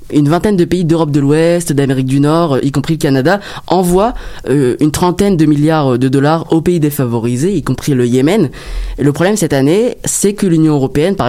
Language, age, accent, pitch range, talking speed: French, 20-39, French, 135-170 Hz, 200 wpm